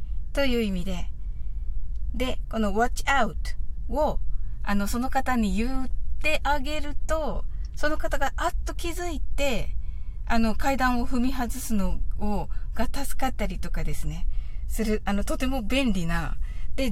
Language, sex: Japanese, female